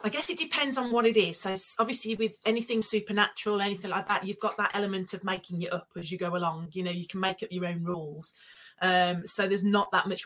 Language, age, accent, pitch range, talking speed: English, 30-49, British, 170-205 Hz, 250 wpm